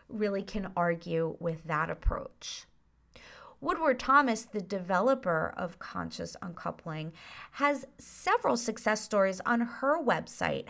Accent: American